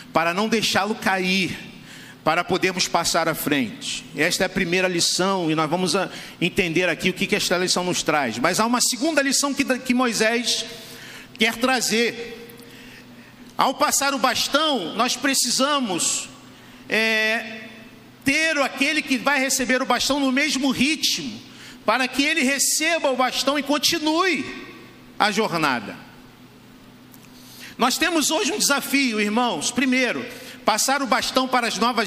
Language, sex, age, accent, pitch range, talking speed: Portuguese, male, 50-69, Brazilian, 220-260 Hz, 135 wpm